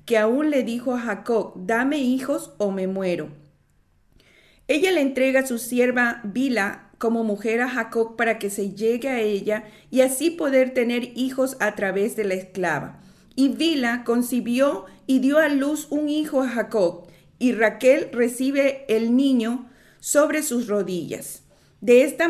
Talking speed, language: 160 wpm, Spanish